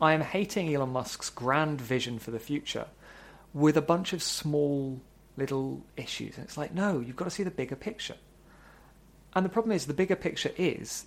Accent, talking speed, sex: British, 195 wpm, male